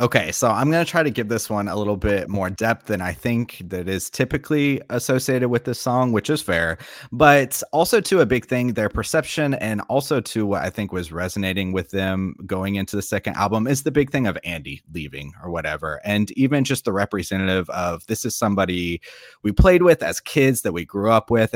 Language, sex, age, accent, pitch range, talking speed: English, male, 30-49, American, 95-125 Hz, 220 wpm